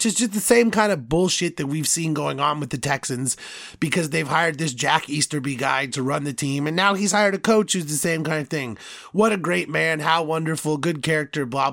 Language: English